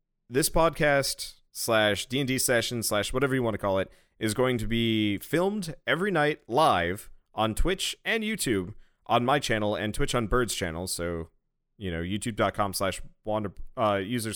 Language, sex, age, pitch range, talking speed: English, male, 30-49, 100-135 Hz, 165 wpm